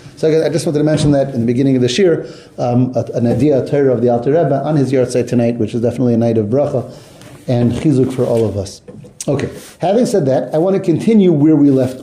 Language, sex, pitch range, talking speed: English, male, 130-170 Hz, 245 wpm